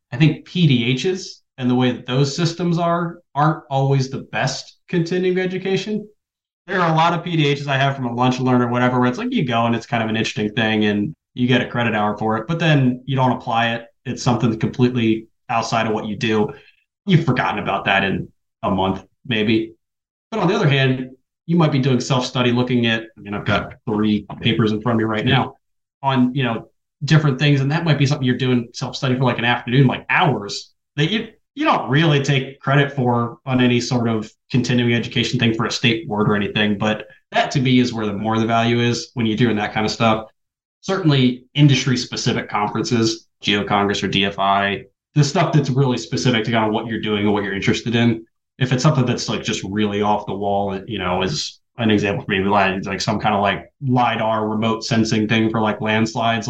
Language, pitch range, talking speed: English, 110-135 Hz, 220 wpm